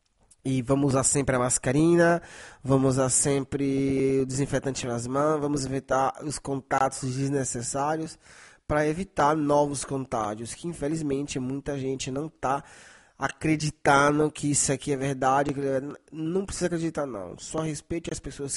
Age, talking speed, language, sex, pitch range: 20-39, 135 wpm, Italian, male, 135-160 Hz